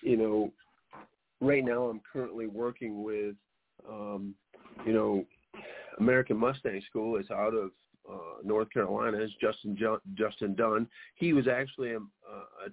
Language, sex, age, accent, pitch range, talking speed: English, male, 50-69, American, 100-120 Hz, 135 wpm